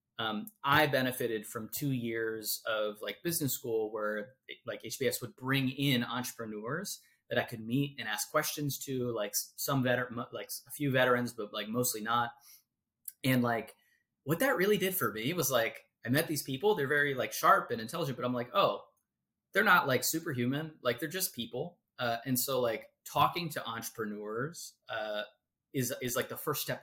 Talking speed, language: 185 wpm, English